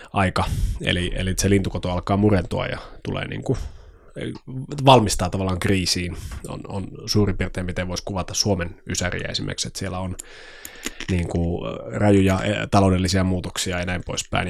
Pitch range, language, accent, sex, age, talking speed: 90-120 Hz, Finnish, native, male, 20-39, 140 wpm